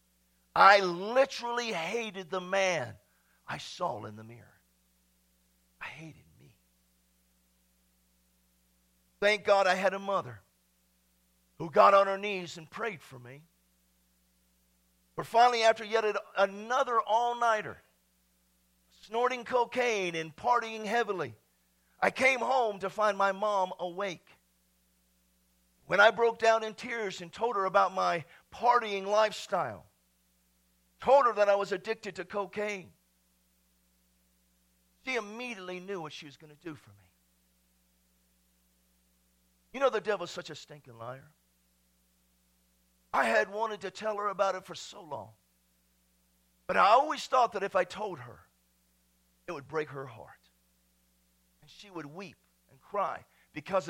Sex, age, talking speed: male, 50-69, 130 wpm